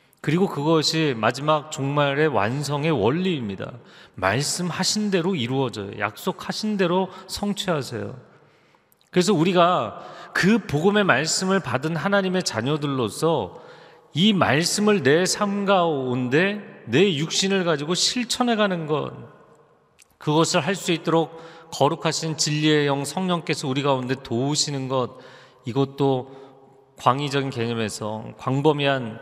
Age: 40-59